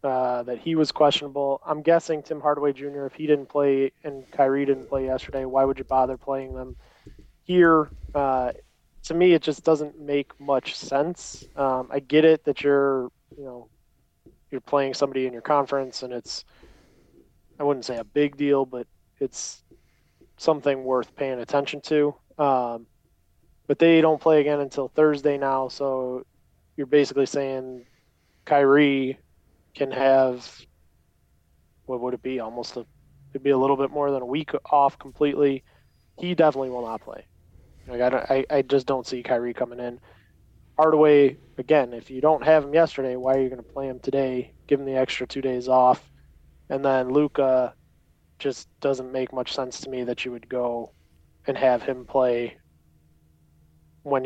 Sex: male